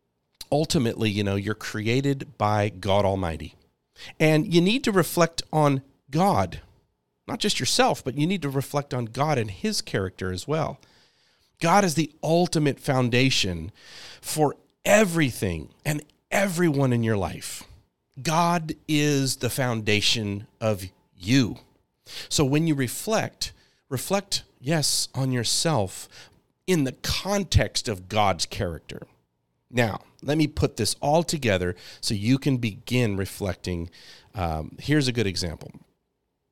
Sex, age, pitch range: male, 40-59, 100-145 Hz